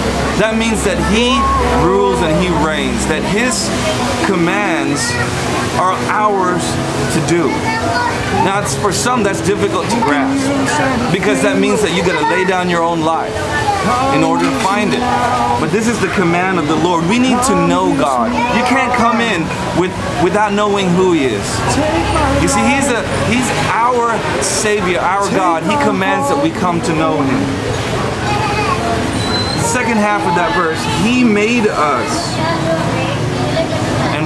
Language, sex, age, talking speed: English, male, 30-49, 155 wpm